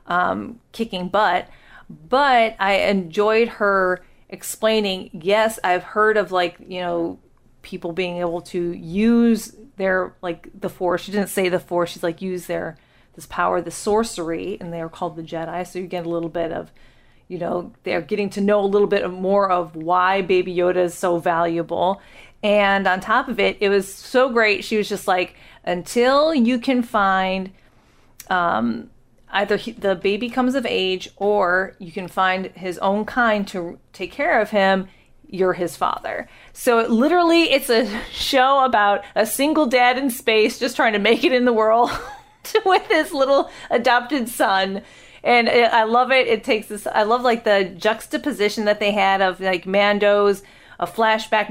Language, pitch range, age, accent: English, 180-225 Hz, 30-49, American